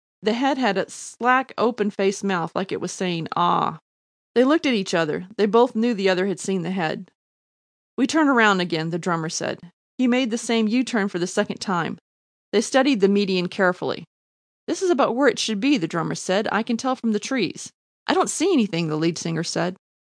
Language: English